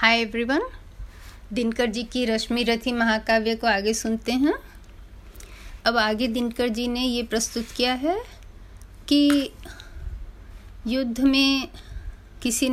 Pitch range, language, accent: 165-235 Hz, Hindi, native